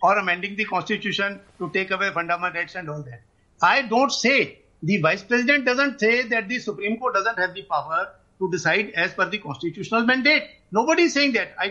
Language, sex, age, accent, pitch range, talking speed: English, male, 50-69, Indian, 210-260 Hz, 205 wpm